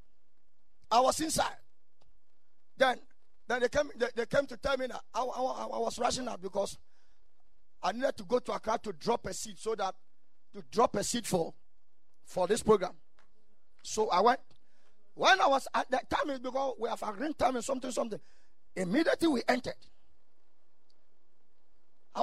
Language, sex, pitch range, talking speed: English, male, 205-295 Hz, 170 wpm